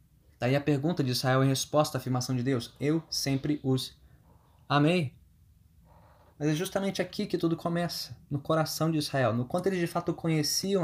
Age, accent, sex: 20-39, Brazilian, male